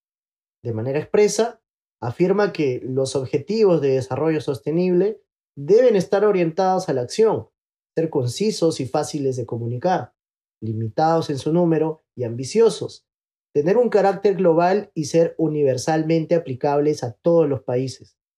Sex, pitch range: male, 130-170 Hz